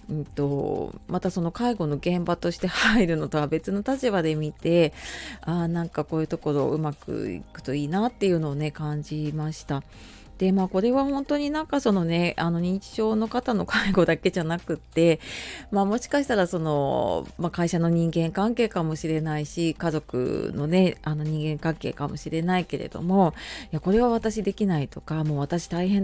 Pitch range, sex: 155-195 Hz, female